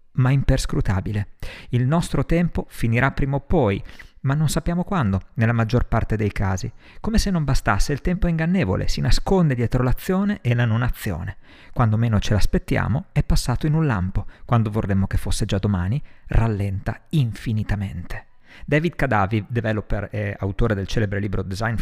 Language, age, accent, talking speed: Italian, 50-69, native, 160 wpm